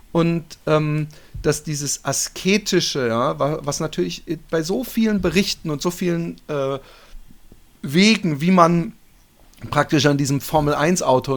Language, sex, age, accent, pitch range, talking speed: German, male, 40-59, German, 125-165 Hz, 115 wpm